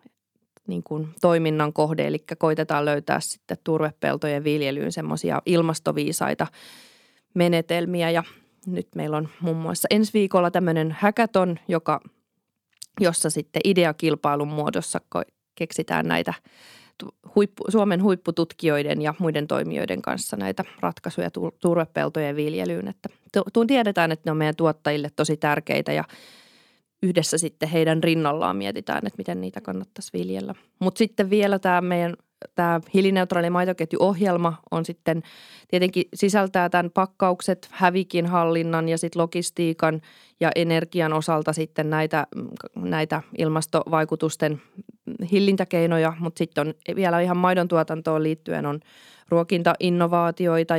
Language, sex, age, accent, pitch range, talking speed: Finnish, female, 20-39, native, 155-180 Hz, 110 wpm